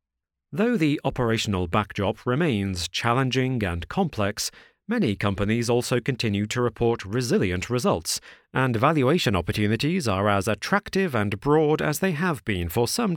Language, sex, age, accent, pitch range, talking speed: English, male, 40-59, British, 95-130 Hz, 135 wpm